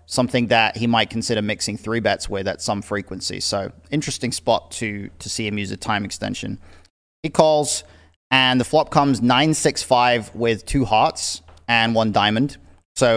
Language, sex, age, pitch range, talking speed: English, male, 30-49, 100-125 Hz, 170 wpm